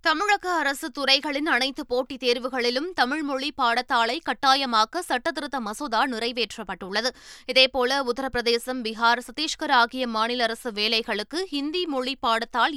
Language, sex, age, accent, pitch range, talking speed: Tamil, female, 20-39, native, 235-285 Hz, 120 wpm